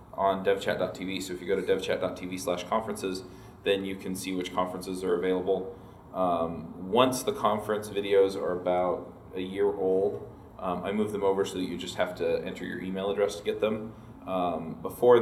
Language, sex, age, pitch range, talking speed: English, male, 20-39, 95-115 Hz, 190 wpm